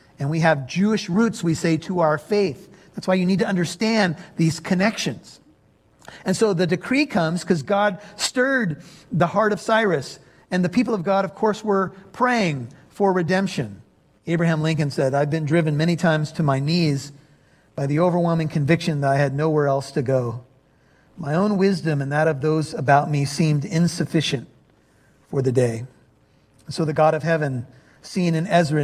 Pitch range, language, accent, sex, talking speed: 145-185 Hz, English, American, male, 175 wpm